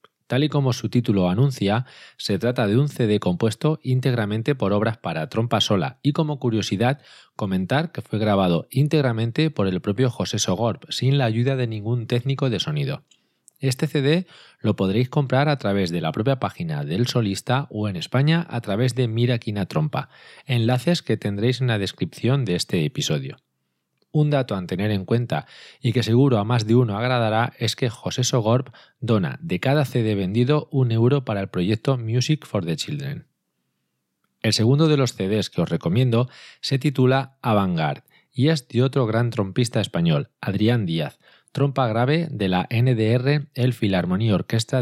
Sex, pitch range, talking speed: male, 105-135 Hz, 175 wpm